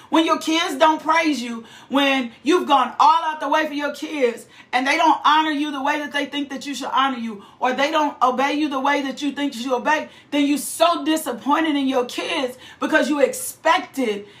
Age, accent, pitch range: 40-59, American, 260-315 Hz